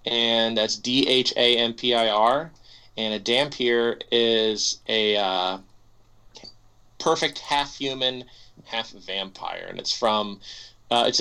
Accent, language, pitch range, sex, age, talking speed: American, English, 110-130 Hz, male, 30-49, 90 wpm